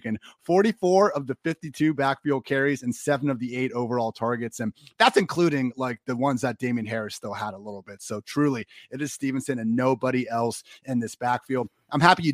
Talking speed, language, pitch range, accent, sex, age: 200 wpm, English, 120-145 Hz, American, male, 30-49